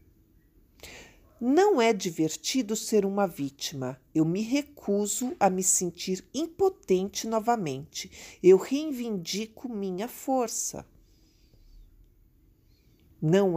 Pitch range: 160-235 Hz